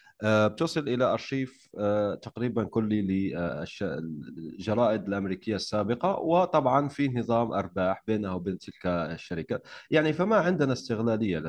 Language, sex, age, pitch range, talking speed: Arabic, male, 30-49, 100-135 Hz, 105 wpm